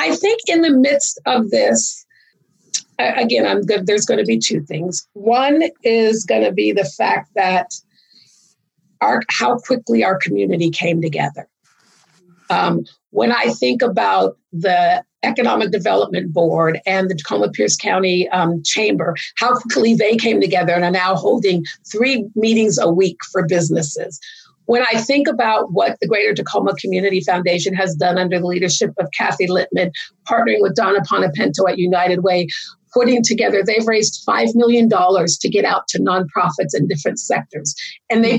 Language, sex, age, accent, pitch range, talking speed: English, female, 40-59, American, 180-240 Hz, 155 wpm